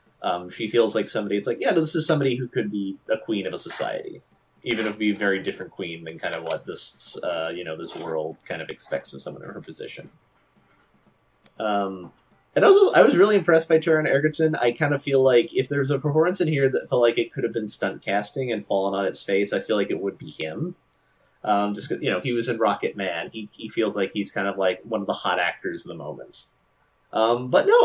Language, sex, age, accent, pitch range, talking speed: English, male, 20-39, American, 100-140 Hz, 250 wpm